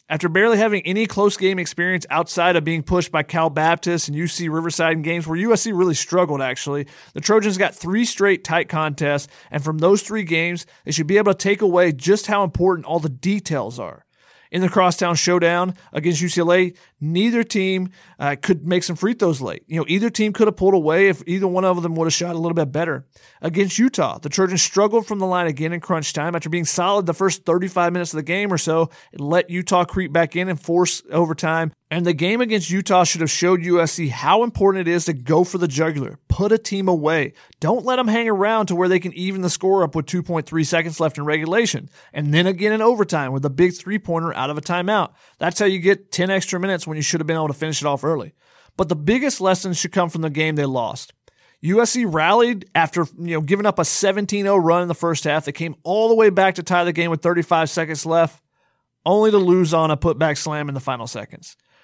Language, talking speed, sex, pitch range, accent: English, 235 wpm, male, 160-195 Hz, American